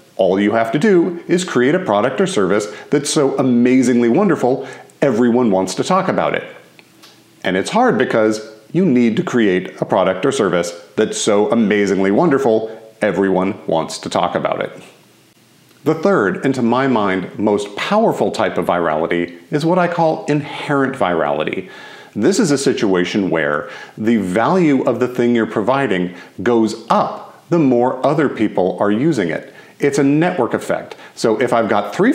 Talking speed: 170 wpm